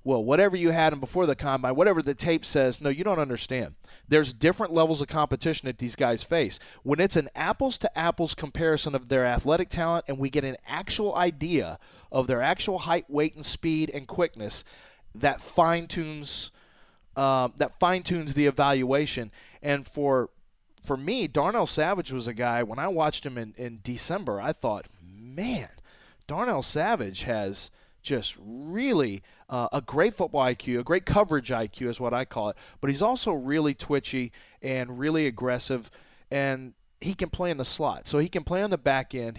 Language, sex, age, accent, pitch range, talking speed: English, male, 30-49, American, 125-160 Hz, 180 wpm